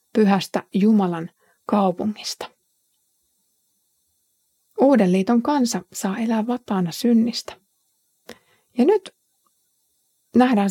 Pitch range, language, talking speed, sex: 190-250 Hz, Finnish, 65 wpm, female